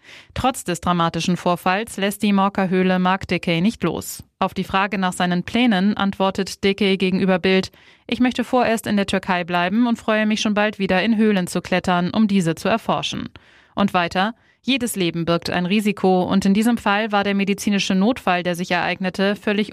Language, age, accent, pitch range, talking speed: German, 20-39, German, 180-210 Hz, 185 wpm